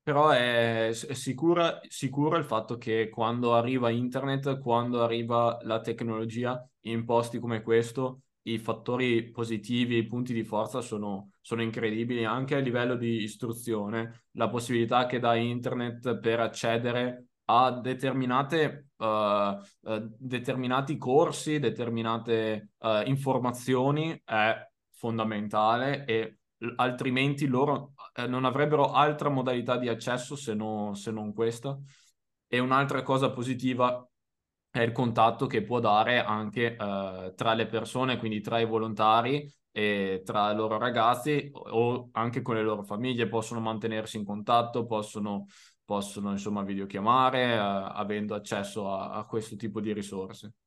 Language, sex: Italian, male